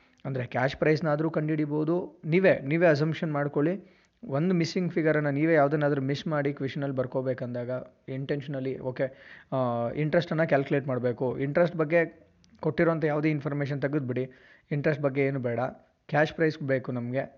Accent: native